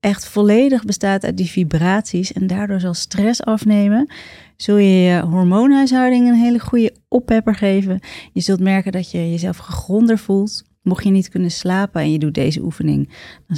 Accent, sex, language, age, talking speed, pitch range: Dutch, female, Dutch, 30-49, 170 wpm, 175-225 Hz